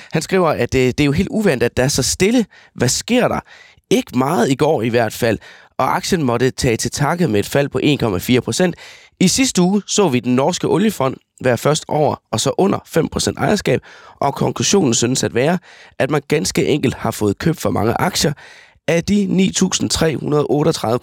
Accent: native